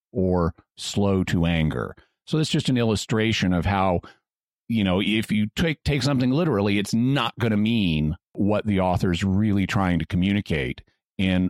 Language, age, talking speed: English, 40-59, 165 wpm